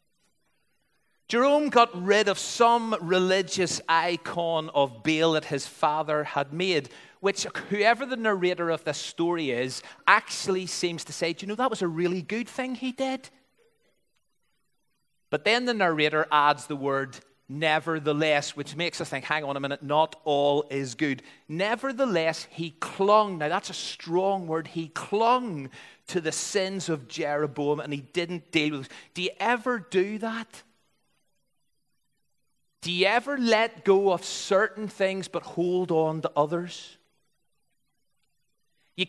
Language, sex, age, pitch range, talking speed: English, male, 30-49, 150-195 Hz, 150 wpm